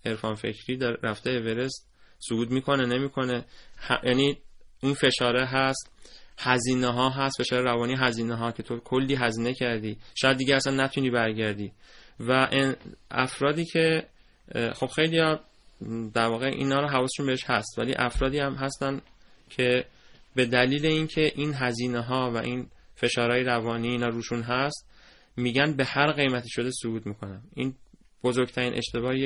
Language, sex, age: Persian, male, 20-39